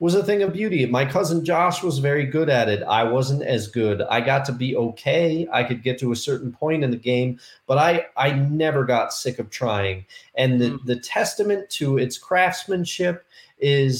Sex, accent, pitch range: male, American, 125-165 Hz